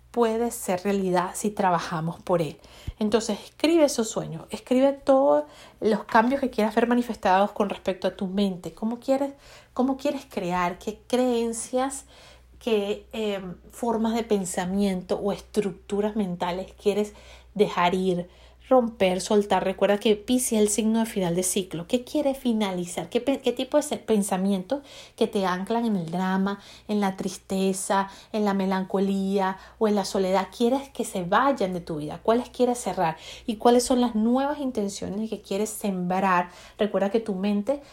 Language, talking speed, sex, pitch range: Spanish, 160 wpm, female, 190-235 Hz